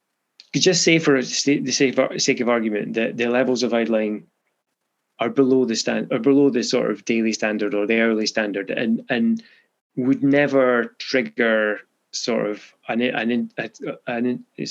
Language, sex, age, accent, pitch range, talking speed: English, male, 20-39, British, 110-130 Hz, 160 wpm